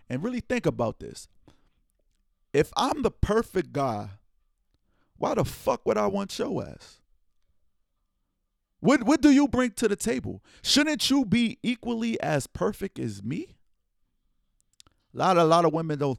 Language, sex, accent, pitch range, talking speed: English, male, American, 130-195 Hz, 150 wpm